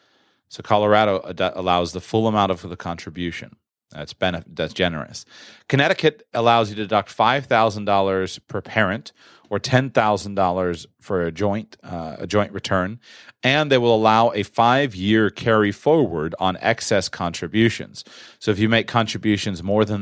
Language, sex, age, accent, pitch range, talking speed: English, male, 30-49, American, 90-110 Hz, 145 wpm